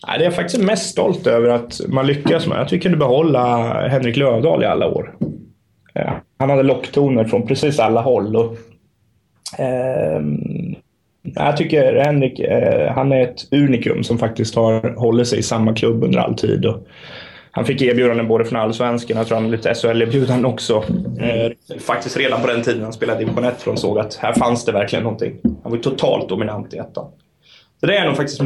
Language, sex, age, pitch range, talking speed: Swedish, male, 20-39, 115-135 Hz, 195 wpm